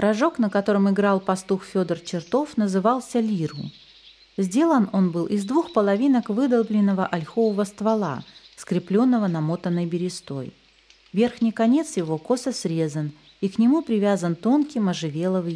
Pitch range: 180-240 Hz